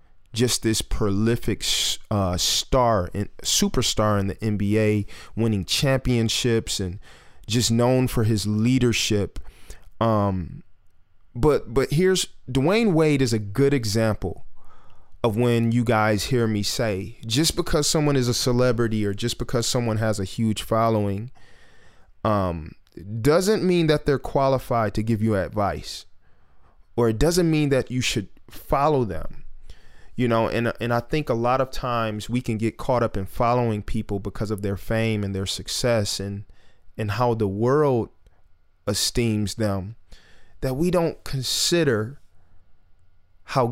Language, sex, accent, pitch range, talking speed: English, male, American, 100-125 Hz, 145 wpm